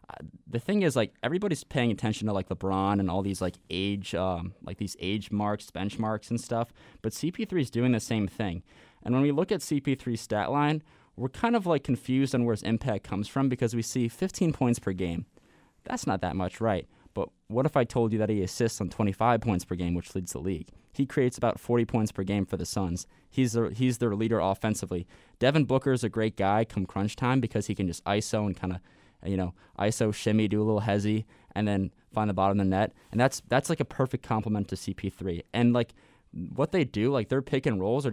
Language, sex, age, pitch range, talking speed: English, male, 20-39, 95-120 Hz, 240 wpm